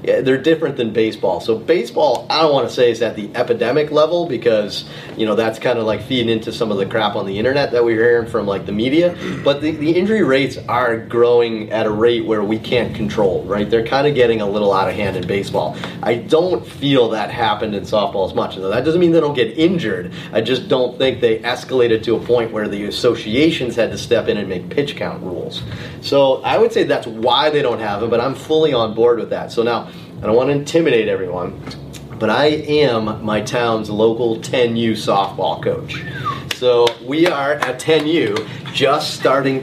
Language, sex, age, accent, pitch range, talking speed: English, male, 30-49, American, 110-160 Hz, 220 wpm